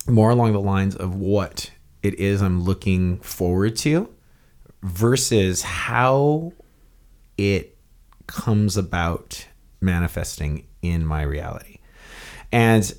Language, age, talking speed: English, 30-49, 100 wpm